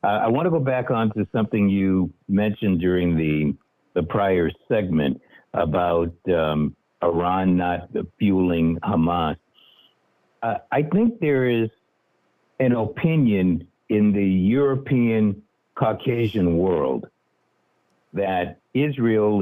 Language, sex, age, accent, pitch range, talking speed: English, male, 60-79, American, 90-125 Hz, 110 wpm